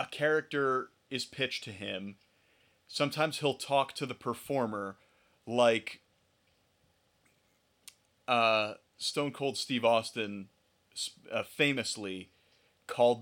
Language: English